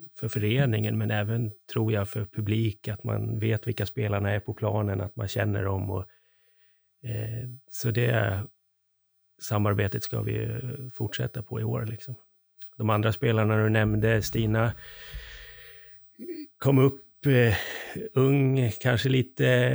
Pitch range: 105-125 Hz